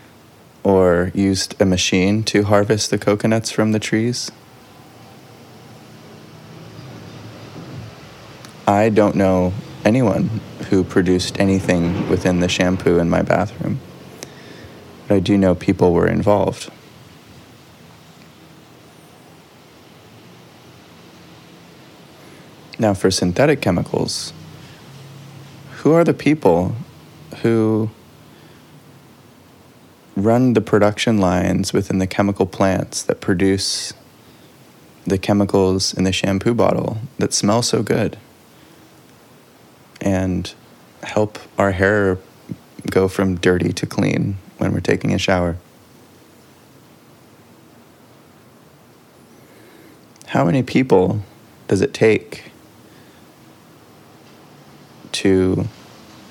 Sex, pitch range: male, 95-110 Hz